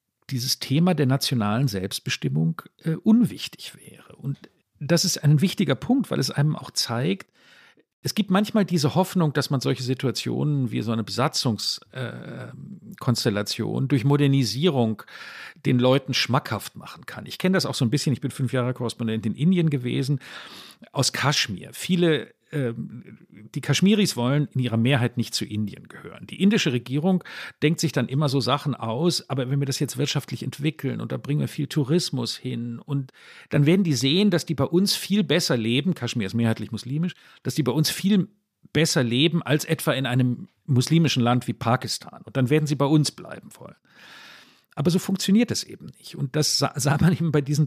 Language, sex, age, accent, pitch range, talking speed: German, male, 50-69, German, 125-170 Hz, 180 wpm